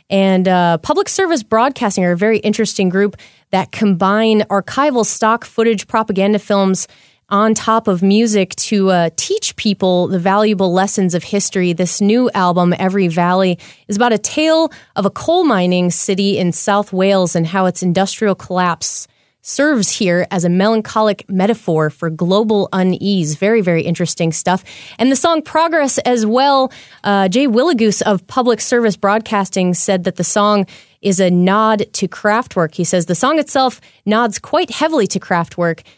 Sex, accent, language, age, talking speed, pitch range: female, American, English, 20-39, 160 wpm, 180-230 Hz